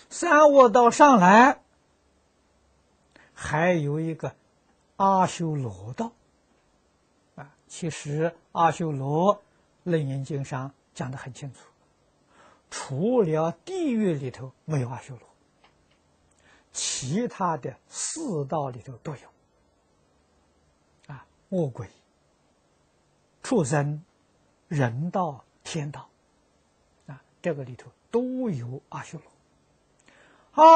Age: 60-79